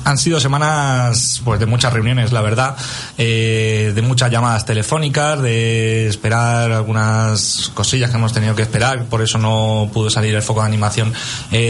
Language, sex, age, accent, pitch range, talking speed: Spanish, male, 30-49, Spanish, 110-125 Hz, 170 wpm